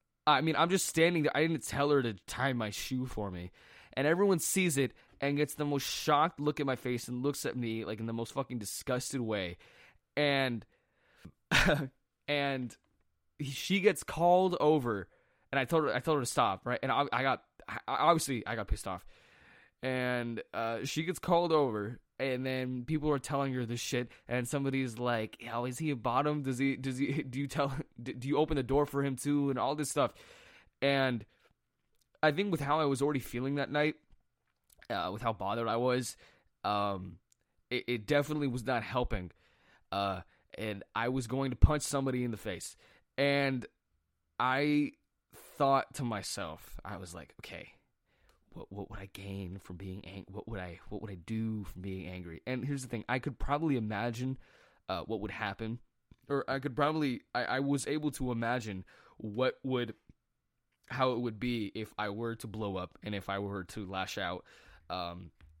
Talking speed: 195 wpm